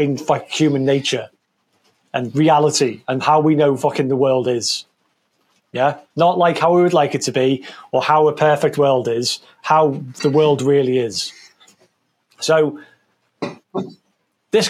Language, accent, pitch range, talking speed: English, British, 130-165 Hz, 145 wpm